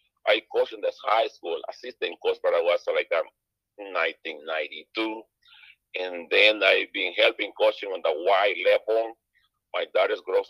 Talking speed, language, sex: 155 wpm, English, male